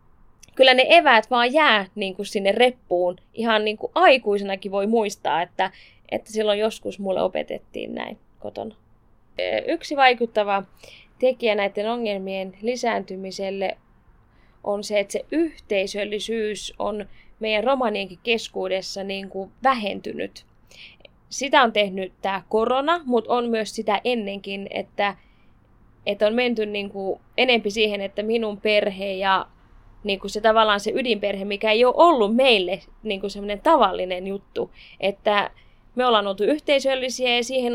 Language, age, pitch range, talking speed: Finnish, 20-39, 200-250 Hz, 130 wpm